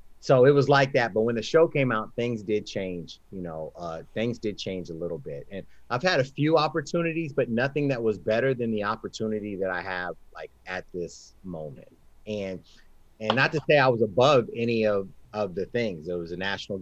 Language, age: English, 30-49